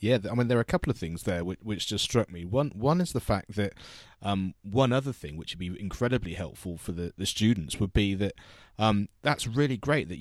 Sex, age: male, 30-49